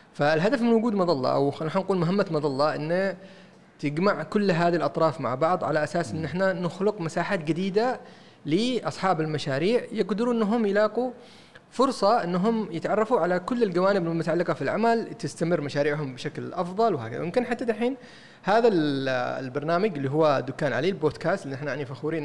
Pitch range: 150-215 Hz